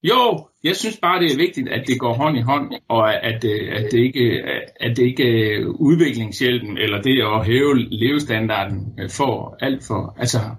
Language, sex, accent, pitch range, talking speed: Danish, male, native, 115-145 Hz, 180 wpm